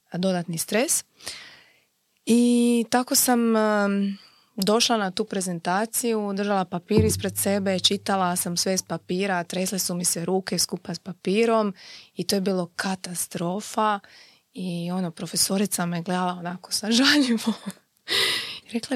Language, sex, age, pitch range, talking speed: Croatian, female, 20-39, 180-230 Hz, 125 wpm